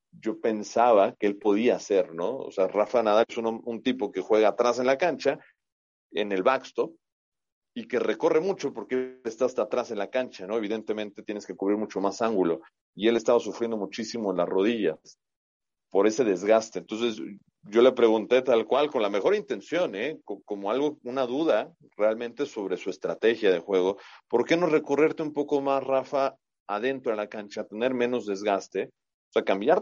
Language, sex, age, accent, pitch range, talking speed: Spanish, male, 40-59, Mexican, 105-135 Hz, 185 wpm